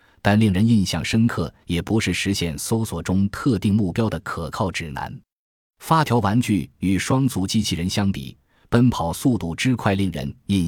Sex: male